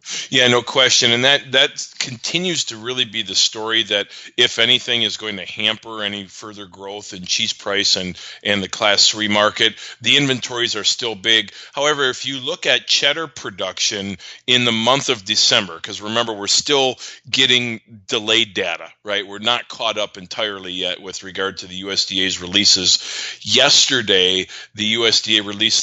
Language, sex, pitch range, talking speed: English, male, 100-120 Hz, 165 wpm